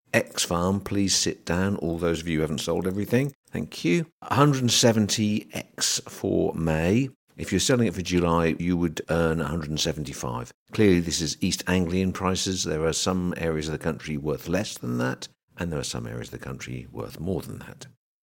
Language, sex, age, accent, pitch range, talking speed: English, male, 50-69, British, 75-110 Hz, 190 wpm